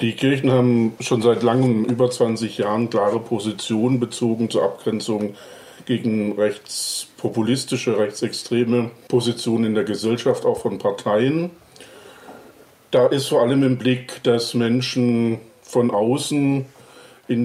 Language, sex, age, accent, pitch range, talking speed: German, male, 50-69, German, 115-130 Hz, 120 wpm